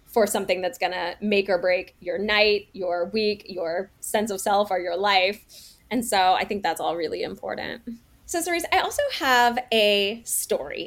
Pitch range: 185-245 Hz